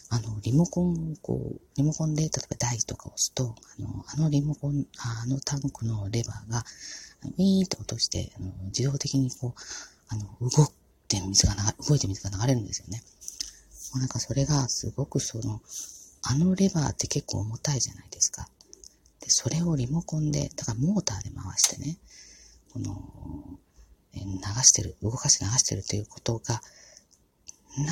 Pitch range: 105-150 Hz